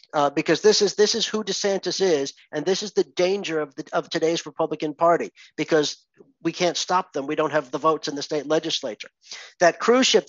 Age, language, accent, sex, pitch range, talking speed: 50-69, English, American, male, 150-185 Hz, 215 wpm